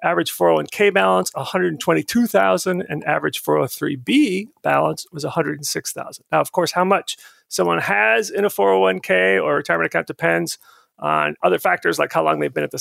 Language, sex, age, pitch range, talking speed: English, male, 40-59, 145-200 Hz, 160 wpm